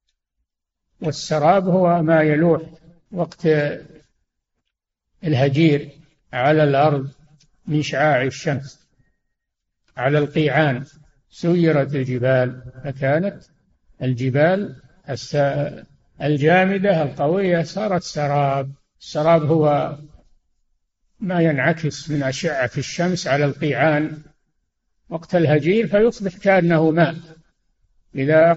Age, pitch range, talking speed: 60-79, 140-170 Hz, 75 wpm